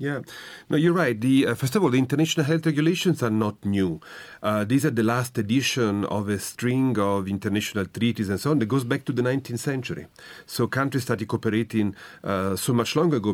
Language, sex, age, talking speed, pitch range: English, male, 40-59, 205 wpm, 105-135 Hz